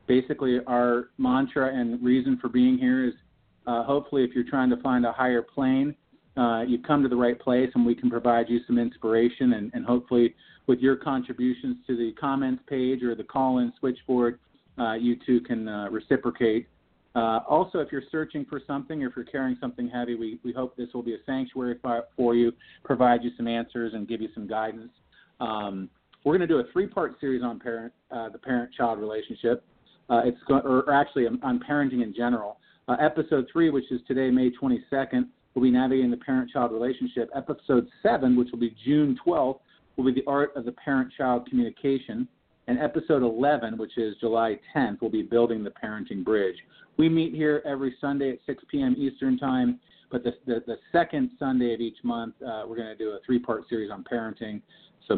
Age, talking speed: 40-59, 195 wpm